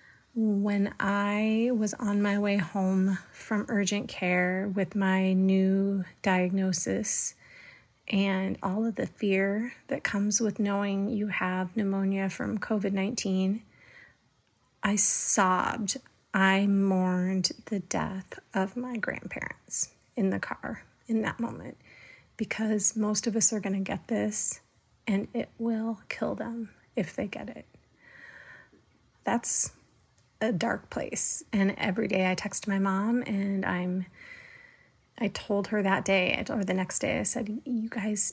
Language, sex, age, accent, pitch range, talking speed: English, female, 30-49, American, 195-225 Hz, 135 wpm